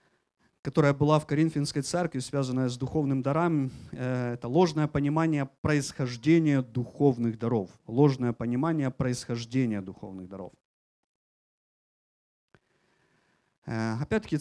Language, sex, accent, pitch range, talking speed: Ukrainian, male, native, 115-160 Hz, 85 wpm